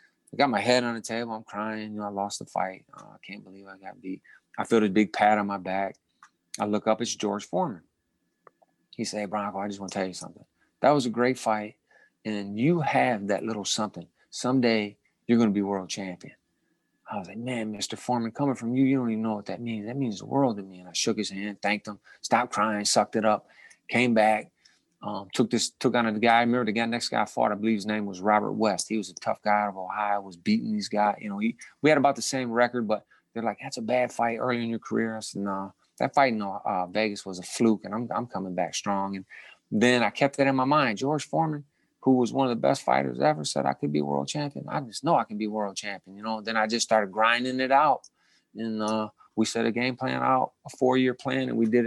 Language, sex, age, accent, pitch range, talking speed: English, male, 30-49, American, 100-125 Hz, 260 wpm